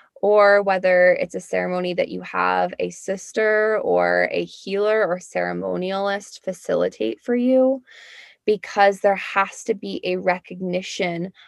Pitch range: 180-235 Hz